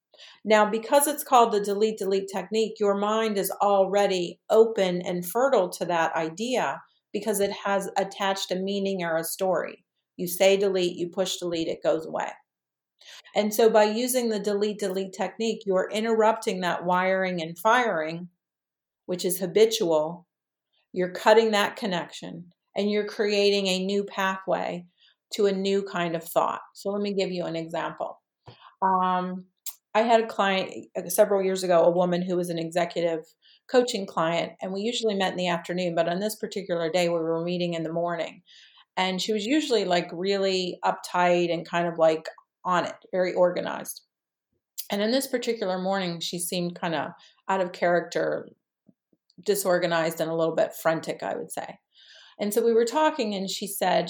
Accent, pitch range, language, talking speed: American, 175-210 Hz, English, 165 wpm